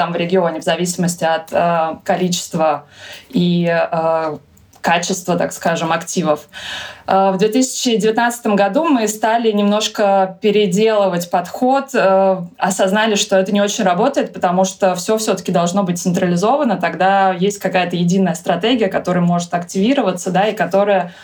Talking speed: 135 wpm